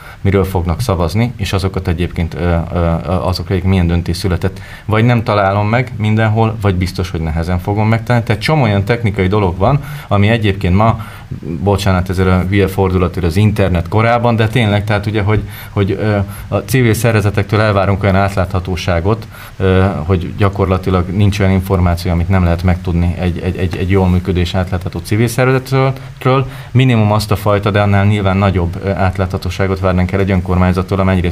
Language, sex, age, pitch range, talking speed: Hungarian, male, 30-49, 95-105 Hz, 155 wpm